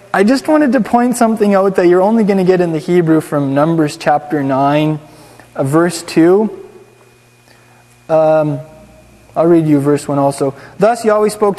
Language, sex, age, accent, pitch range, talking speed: English, male, 20-39, American, 160-210 Hz, 165 wpm